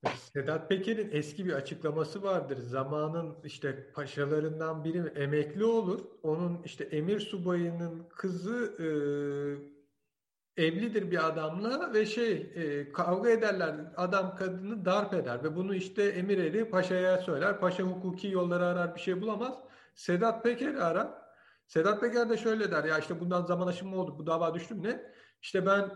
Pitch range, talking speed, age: 170-205 Hz, 150 wpm, 50-69